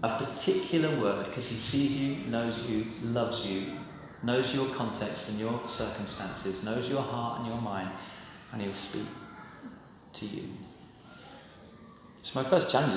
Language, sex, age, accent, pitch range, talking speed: English, male, 40-59, British, 115-170 Hz, 150 wpm